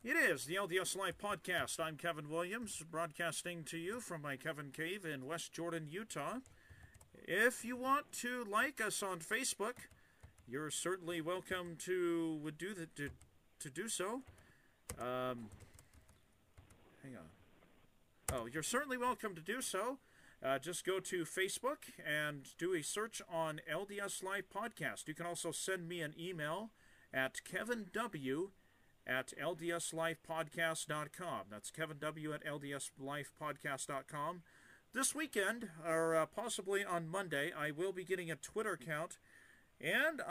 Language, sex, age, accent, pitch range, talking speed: English, male, 40-59, American, 150-195 Hz, 130 wpm